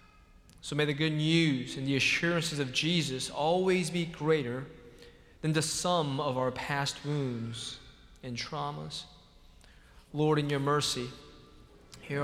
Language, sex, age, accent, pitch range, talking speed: English, male, 20-39, American, 130-165 Hz, 130 wpm